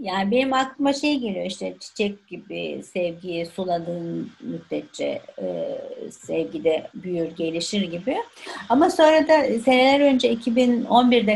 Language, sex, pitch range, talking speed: Turkish, female, 190-260 Hz, 120 wpm